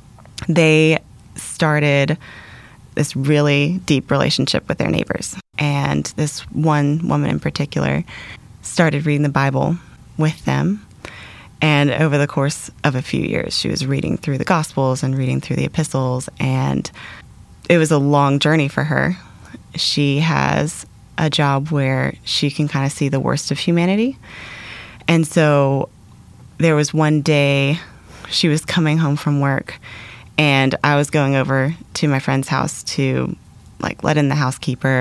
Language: English